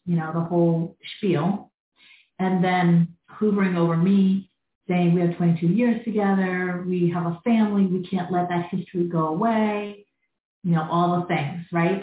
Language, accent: English, American